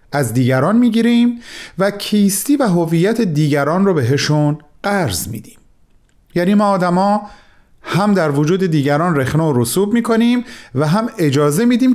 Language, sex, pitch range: Persian, male, 120-195 Hz